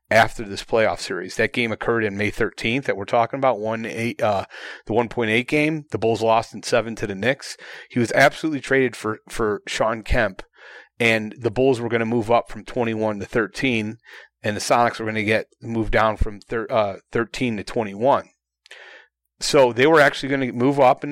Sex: male